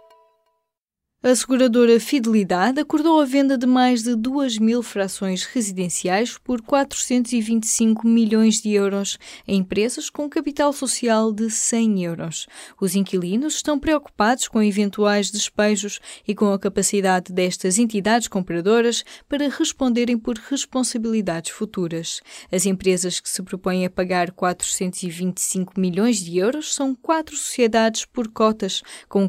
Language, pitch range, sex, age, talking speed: Portuguese, 185-250 Hz, female, 20-39, 130 wpm